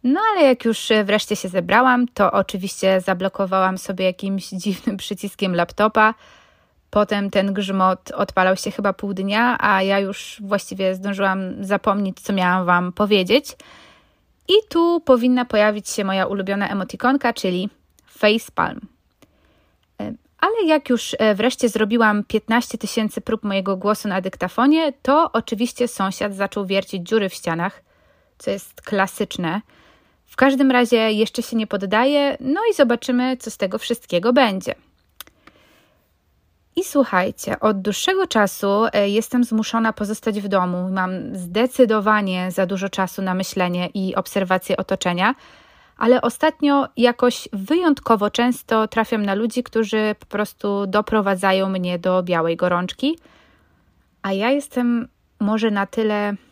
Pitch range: 195-240 Hz